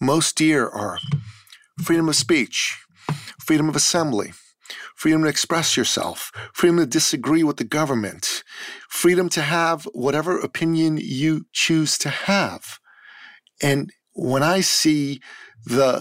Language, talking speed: English, 125 wpm